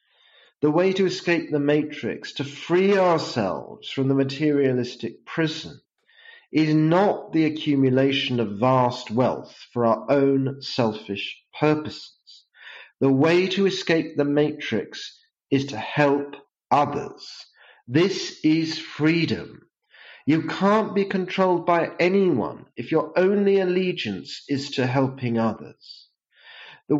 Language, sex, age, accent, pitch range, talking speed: English, male, 40-59, British, 140-175 Hz, 120 wpm